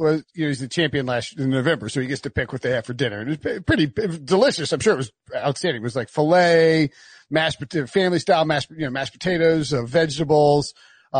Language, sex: English, male